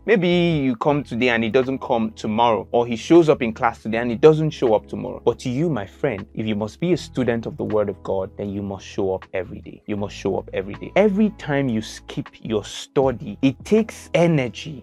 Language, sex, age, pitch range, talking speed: English, male, 20-39, 110-145 Hz, 245 wpm